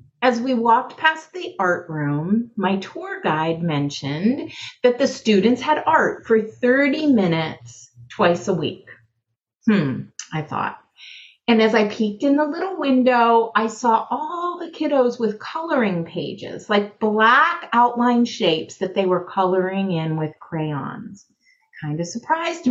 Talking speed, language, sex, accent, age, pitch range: 145 wpm, English, female, American, 30-49, 180-260 Hz